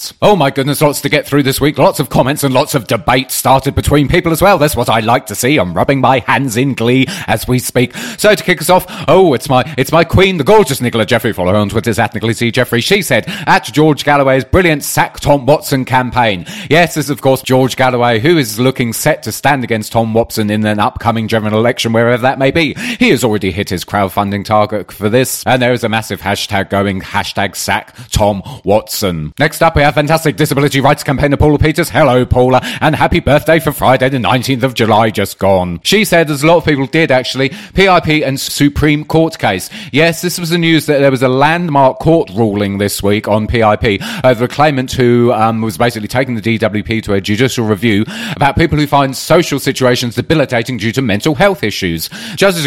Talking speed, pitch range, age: 220 wpm, 115-150 Hz, 30-49